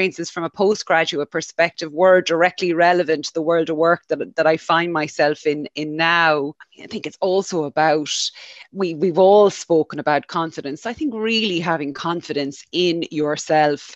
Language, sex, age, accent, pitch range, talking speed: English, female, 30-49, Irish, 155-185 Hz, 165 wpm